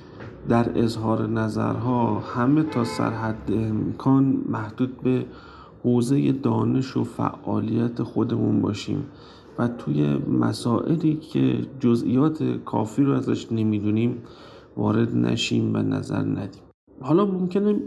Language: Persian